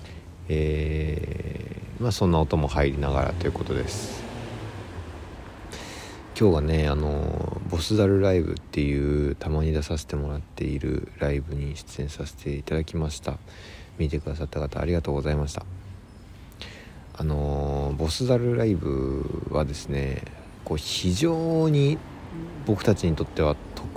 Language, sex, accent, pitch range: Japanese, male, native, 75-105 Hz